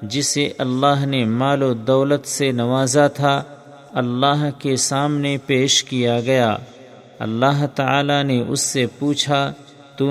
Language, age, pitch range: Urdu, 50-69, 130-140 Hz